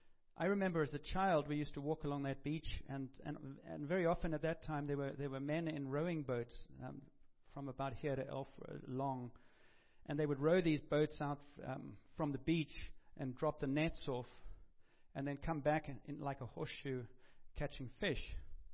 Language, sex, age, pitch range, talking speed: English, male, 40-59, 130-155 Hz, 200 wpm